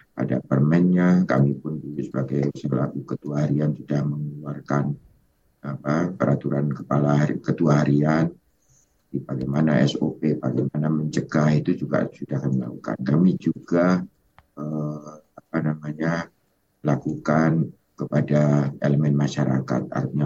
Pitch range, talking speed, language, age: 70-75 Hz, 110 wpm, Indonesian, 60-79